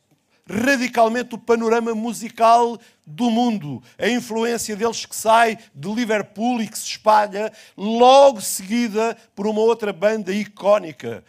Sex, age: male, 50-69